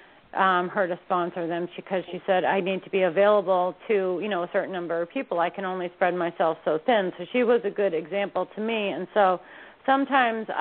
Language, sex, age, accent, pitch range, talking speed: English, female, 40-59, American, 175-205 Hz, 220 wpm